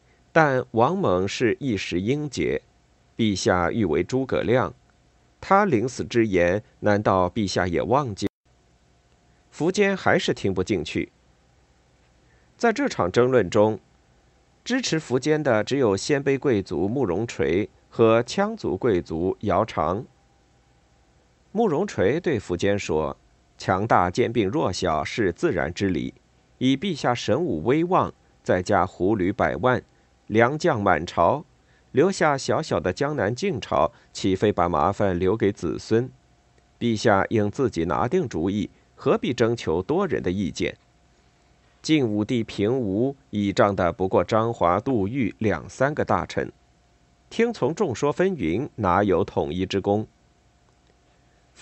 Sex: male